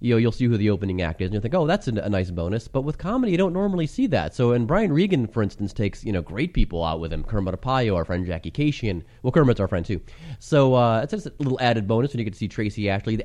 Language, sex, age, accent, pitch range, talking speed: English, male, 30-49, American, 100-140 Hz, 300 wpm